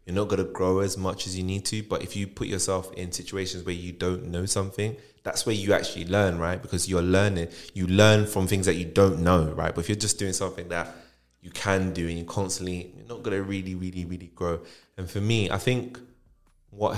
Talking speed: 235 wpm